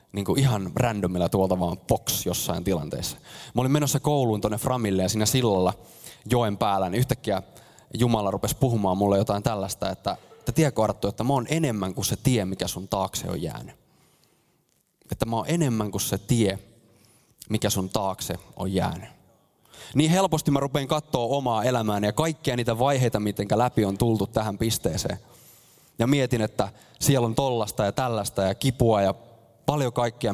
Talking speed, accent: 170 wpm, native